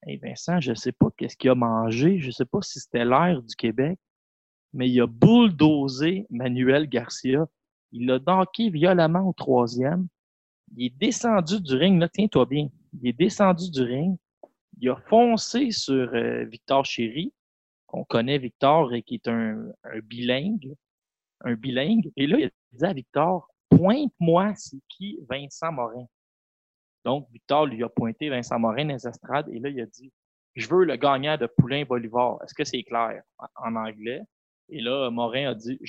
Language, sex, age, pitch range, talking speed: French, male, 30-49, 120-160 Hz, 180 wpm